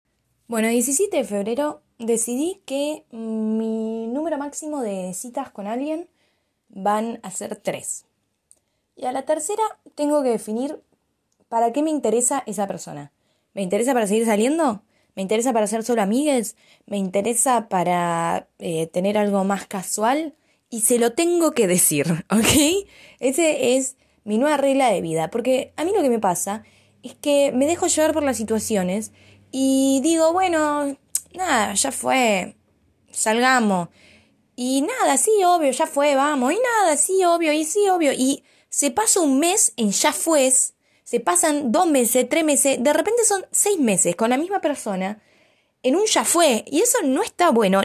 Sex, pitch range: female, 215-300 Hz